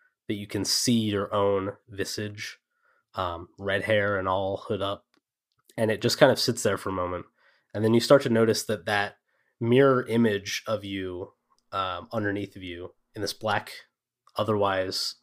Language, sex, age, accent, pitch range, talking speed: English, male, 20-39, American, 100-120 Hz, 175 wpm